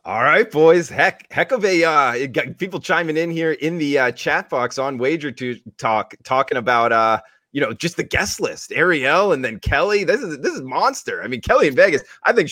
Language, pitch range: English, 105-140 Hz